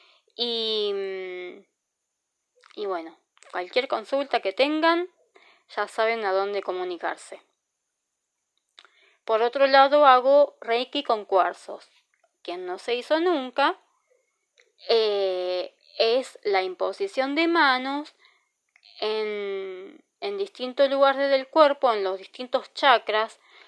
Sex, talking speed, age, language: female, 100 wpm, 20-39, Spanish